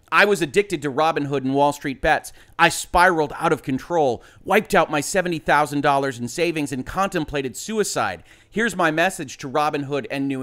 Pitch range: 140-185 Hz